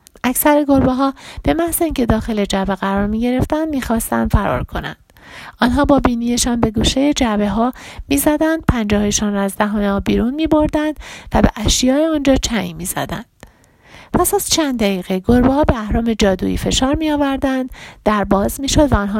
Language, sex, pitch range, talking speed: Persian, female, 210-275 Hz, 155 wpm